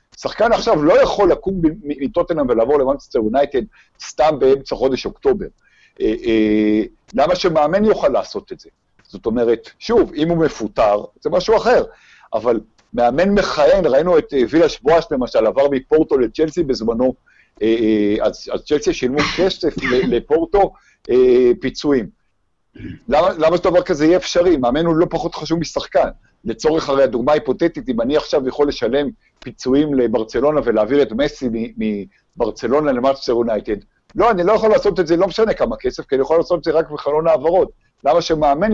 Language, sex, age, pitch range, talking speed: Hebrew, male, 50-69, 120-175 Hz, 145 wpm